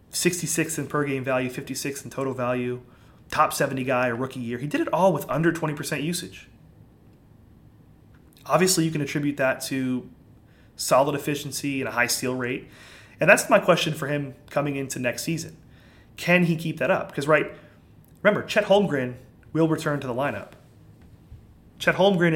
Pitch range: 125-160 Hz